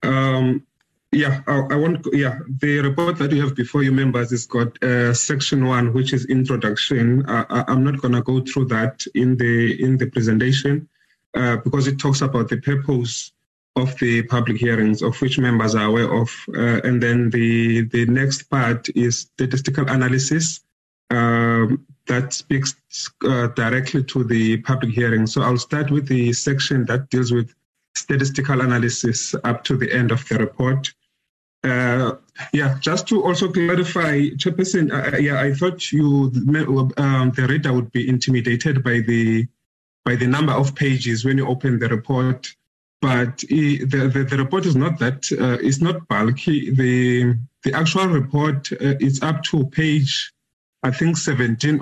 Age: 20-39